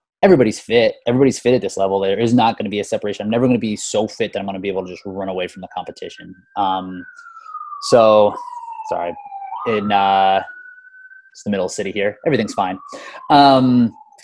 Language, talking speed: English, 200 wpm